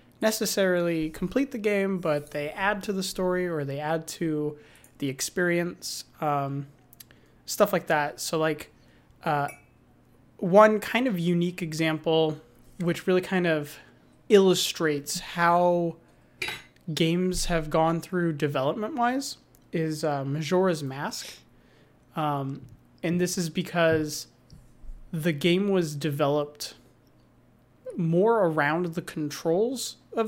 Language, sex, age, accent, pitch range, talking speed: English, male, 20-39, American, 145-180 Hz, 115 wpm